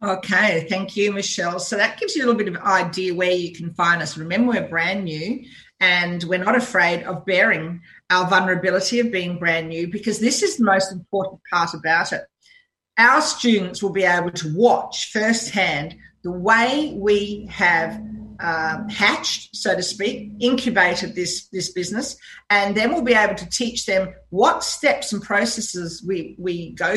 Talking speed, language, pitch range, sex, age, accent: 180 wpm, English, 180-230 Hz, female, 40-59, Australian